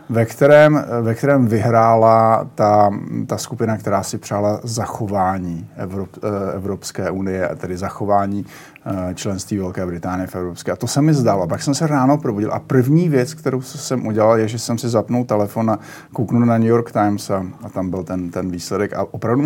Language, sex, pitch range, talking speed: Slovak, male, 100-125 Hz, 180 wpm